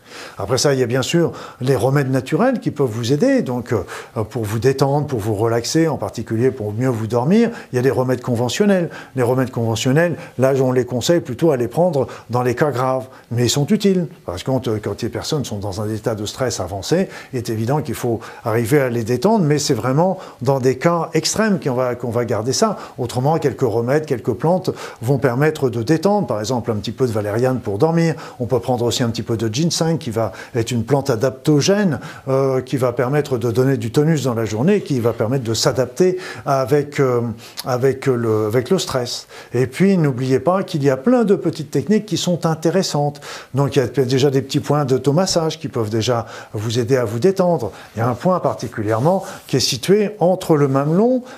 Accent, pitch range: French, 120-160 Hz